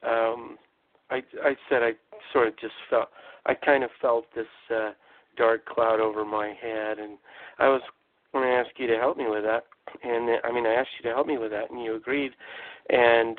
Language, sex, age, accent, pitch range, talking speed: English, male, 50-69, American, 120-145 Hz, 210 wpm